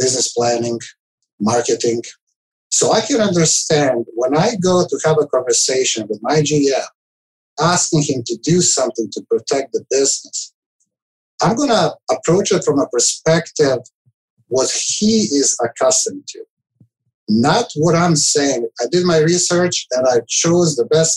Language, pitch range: English, 130-180 Hz